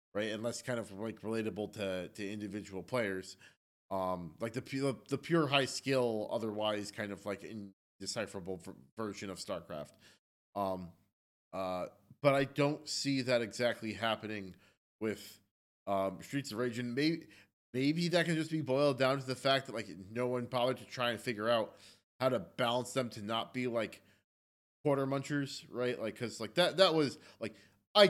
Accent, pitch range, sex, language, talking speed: American, 100-140 Hz, male, English, 170 wpm